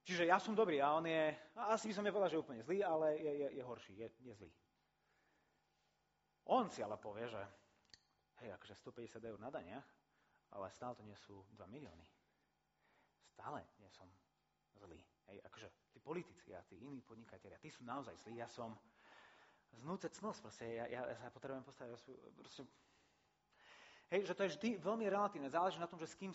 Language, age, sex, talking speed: Slovak, 30-49, male, 190 wpm